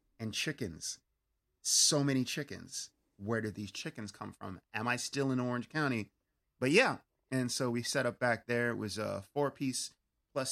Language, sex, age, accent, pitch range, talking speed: English, male, 30-49, American, 105-130 Hz, 175 wpm